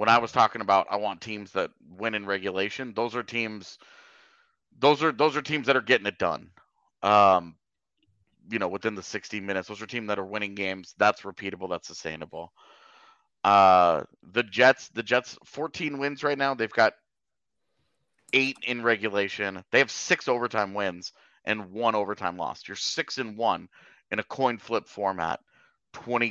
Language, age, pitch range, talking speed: English, 30-49, 105-130 Hz, 175 wpm